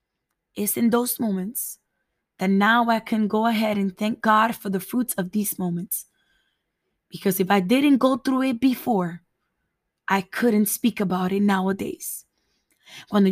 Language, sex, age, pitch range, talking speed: English, female, 20-39, 190-230 Hz, 155 wpm